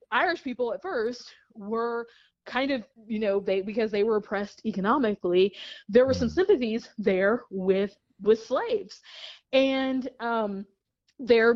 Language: English